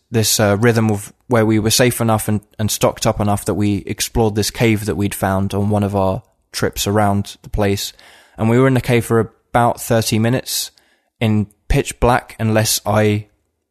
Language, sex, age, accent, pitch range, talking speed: English, male, 20-39, British, 105-115 Hz, 195 wpm